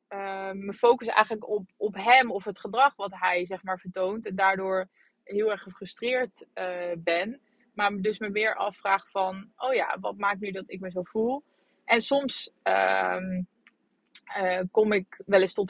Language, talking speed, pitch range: Dutch, 180 wpm, 190-225 Hz